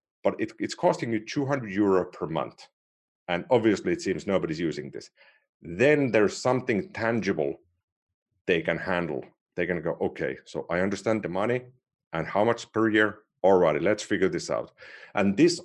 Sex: male